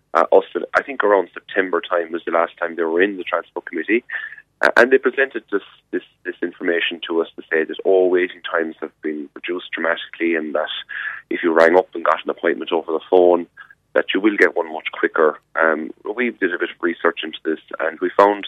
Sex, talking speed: male, 220 wpm